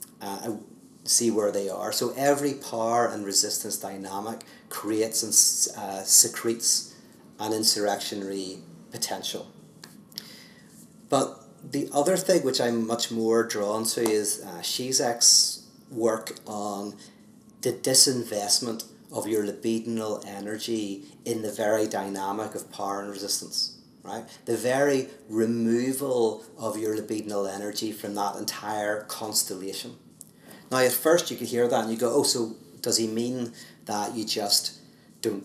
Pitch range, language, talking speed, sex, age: 105-120 Hz, English, 130 wpm, male, 40-59